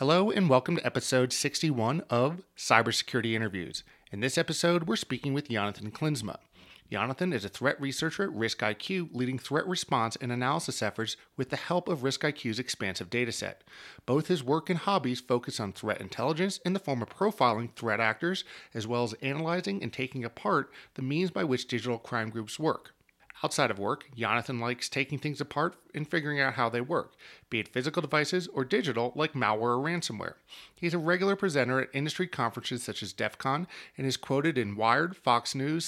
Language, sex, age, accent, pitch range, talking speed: English, male, 30-49, American, 120-170 Hz, 185 wpm